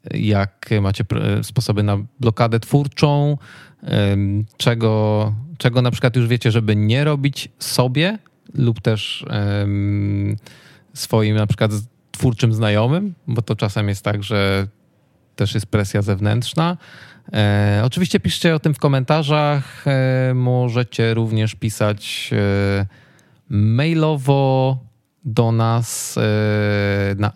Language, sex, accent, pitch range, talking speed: Polish, male, native, 105-130 Hz, 105 wpm